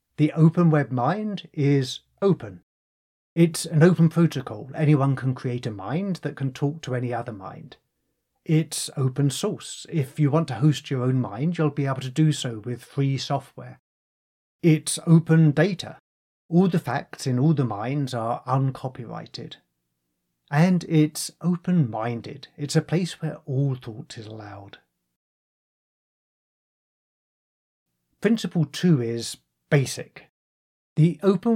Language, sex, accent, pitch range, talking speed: English, male, British, 120-155 Hz, 135 wpm